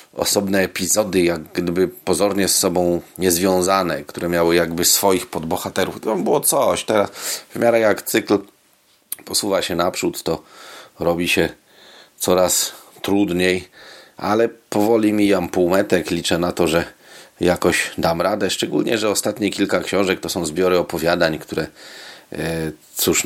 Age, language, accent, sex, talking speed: 40-59, Polish, native, male, 135 wpm